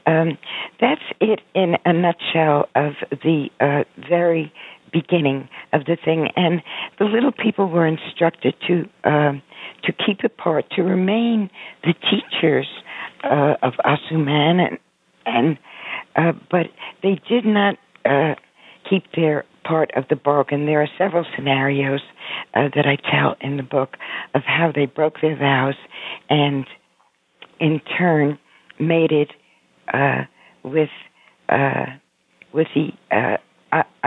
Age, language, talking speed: 60-79, English, 130 wpm